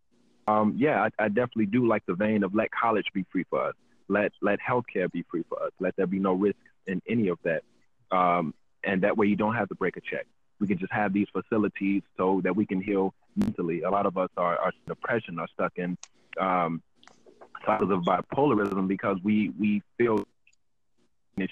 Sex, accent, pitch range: male, American, 95-105 Hz